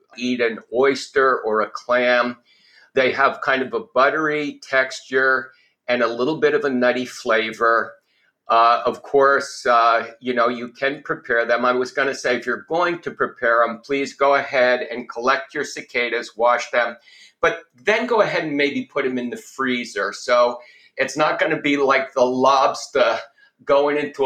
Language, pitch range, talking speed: English, 120-140 Hz, 180 wpm